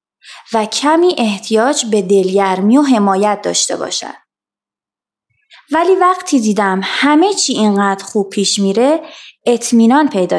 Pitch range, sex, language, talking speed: 210-320 Hz, female, Persian, 115 wpm